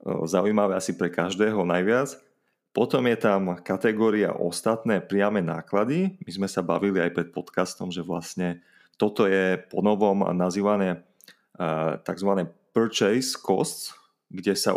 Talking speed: 120 wpm